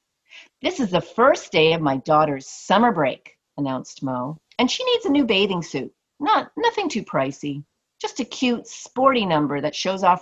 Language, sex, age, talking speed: English, female, 40-59, 180 wpm